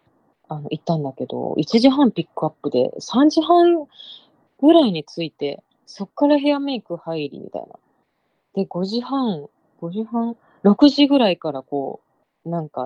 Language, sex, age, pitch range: Japanese, female, 20-39, 155-245 Hz